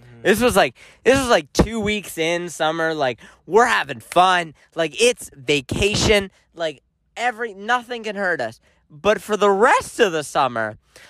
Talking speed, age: 160 wpm, 30-49